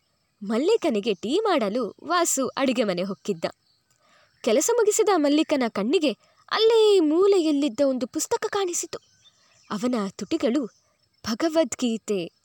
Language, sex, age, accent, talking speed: Kannada, female, 20-39, native, 90 wpm